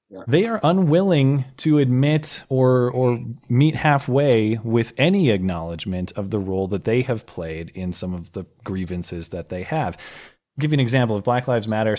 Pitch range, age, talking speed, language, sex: 95-130 Hz, 30-49, 180 wpm, English, male